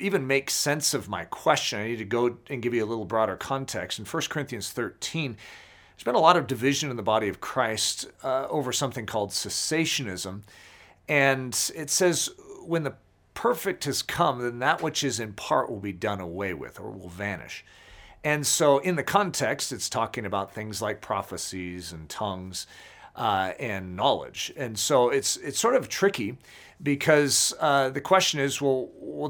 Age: 40-59